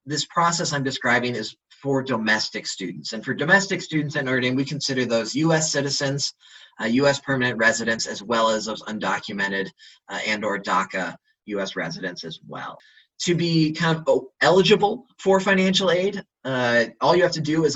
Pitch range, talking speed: 125-165 Hz, 170 wpm